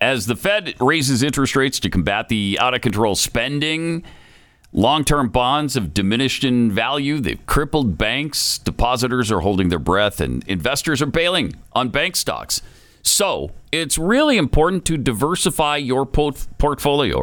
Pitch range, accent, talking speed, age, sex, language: 105-150 Hz, American, 140 wpm, 50-69, male, English